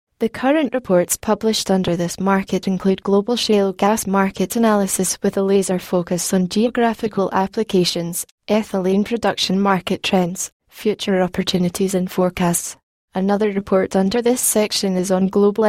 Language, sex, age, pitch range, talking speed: English, female, 10-29, 185-210 Hz, 140 wpm